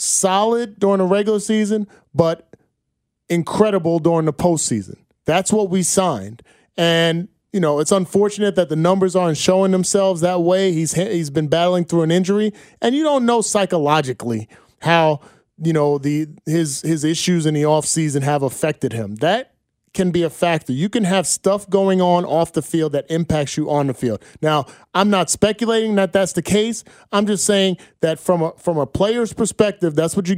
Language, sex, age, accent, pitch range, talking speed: English, male, 30-49, American, 155-200 Hz, 185 wpm